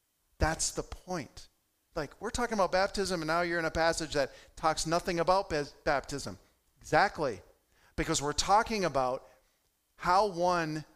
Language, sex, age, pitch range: English, male, 40-59, 140-175 Hz